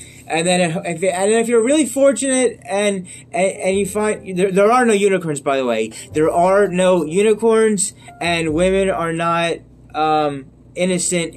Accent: American